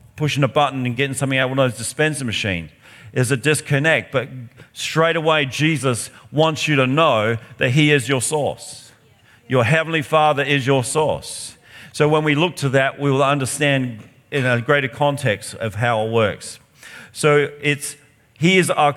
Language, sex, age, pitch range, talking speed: English, male, 50-69, 130-150 Hz, 180 wpm